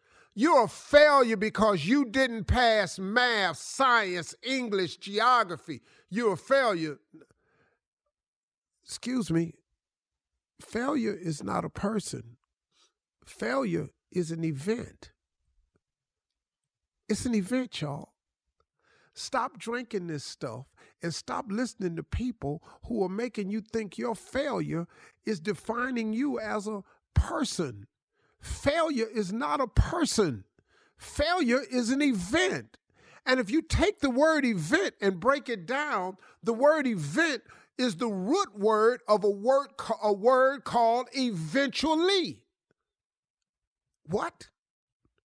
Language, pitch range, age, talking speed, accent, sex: English, 185-265 Hz, 50-69, 115 wpm, American, male